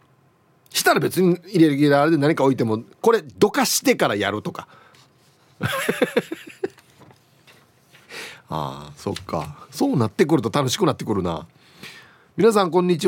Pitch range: 130-180 Hz